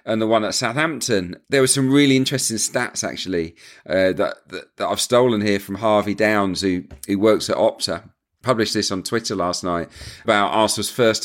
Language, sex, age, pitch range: English, male, 40-59, 100-120 Hz